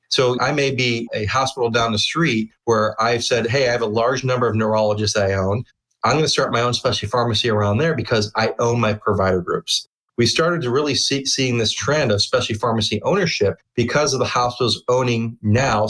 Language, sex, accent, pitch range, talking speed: English, male, American, 110-135 Hz, 210 wpm